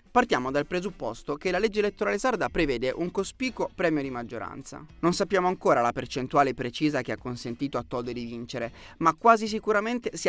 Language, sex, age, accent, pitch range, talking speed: Italian, male, 30-49, native, 125-195 Hz, 180 wpm